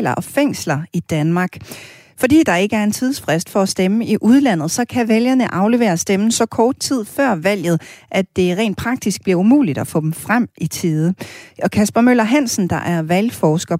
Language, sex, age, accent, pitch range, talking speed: Danish, female, 40-59, native, 170-230 Hz, 190 wpm